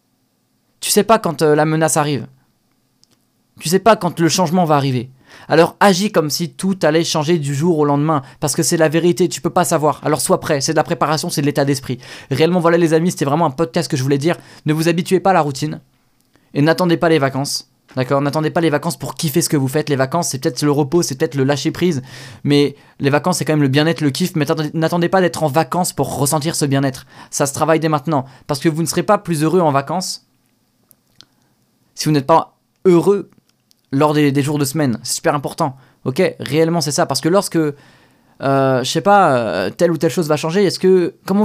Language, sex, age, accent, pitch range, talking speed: French, male, 20-39, French, 145-175 Hz, 235 wpm